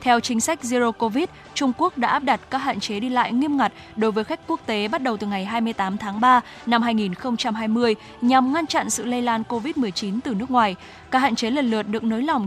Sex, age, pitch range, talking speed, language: female, 10-29, 210-260 Hz, 235 wpm, Vietnamese